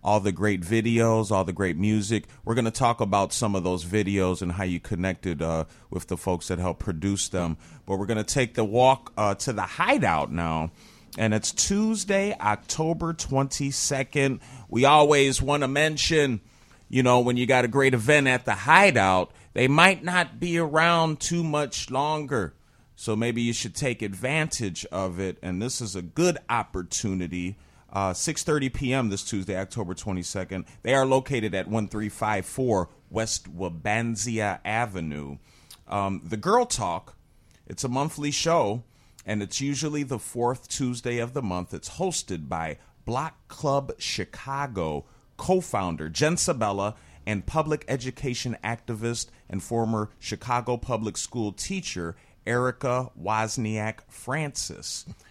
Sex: male